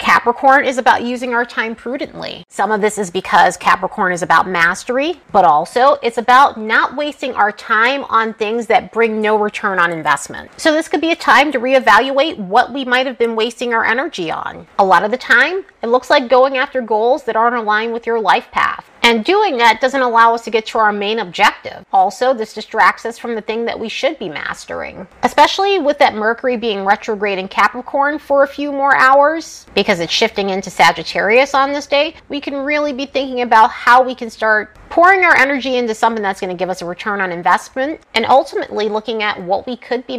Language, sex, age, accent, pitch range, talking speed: English, female, 30-49, American, 210-275 Hz, 215 wpm